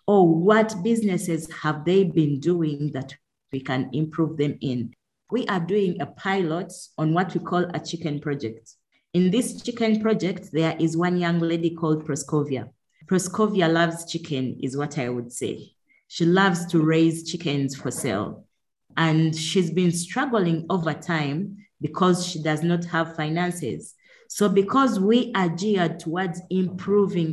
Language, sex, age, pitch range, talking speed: English, female, 30-49, 155-190 Hz, 155 wpm